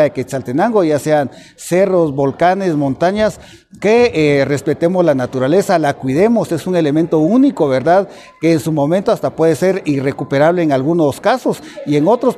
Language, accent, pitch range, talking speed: Spanish, Mexican, 145-190 Hz, 160 wpm